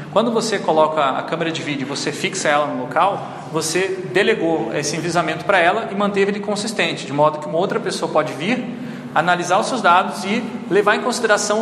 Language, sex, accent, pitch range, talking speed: Portuguese, male, Brazilian, 160-205 Hz, 195 wpm